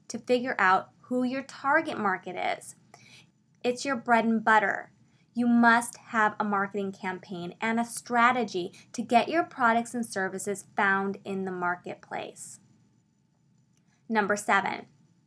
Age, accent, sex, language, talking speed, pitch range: 20-39, American, female, English, 135 wpm, 205-255 Hz